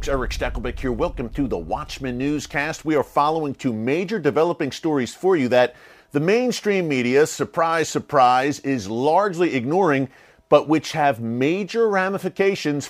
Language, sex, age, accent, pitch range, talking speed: English, male, 40-59, American, 125-165 Hz, 145 wpm